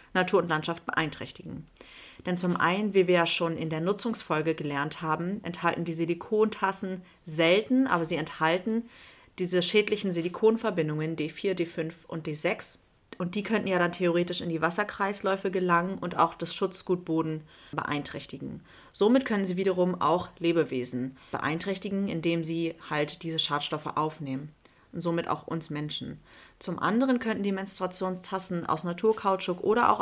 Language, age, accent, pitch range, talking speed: German, 30-49, German, 155-185 Hz, 145 wpm